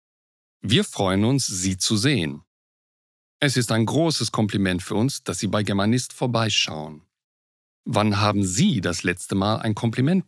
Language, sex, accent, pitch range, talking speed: Czech, male, German, 90-125 Hz, 150 wpm